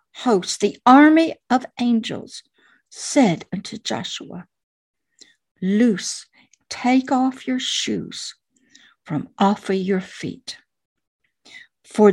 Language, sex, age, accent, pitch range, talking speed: English, female, 60-79, American, 210-275 Hz, 95 wpm